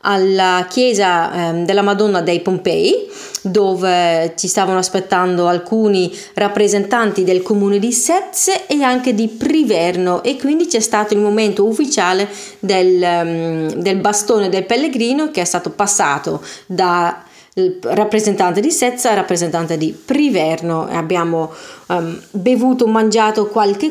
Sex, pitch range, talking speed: female, 185-260 Hz, 125 wpm